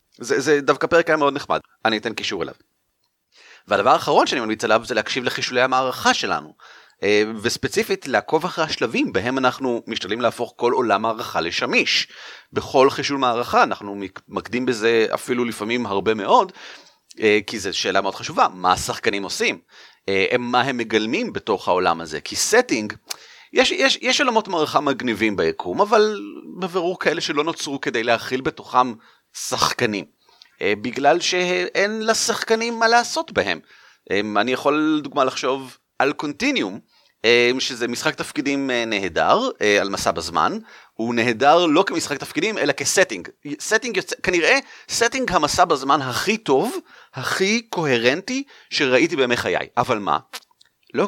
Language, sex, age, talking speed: Hebrew, male, 30-49, 135 wpm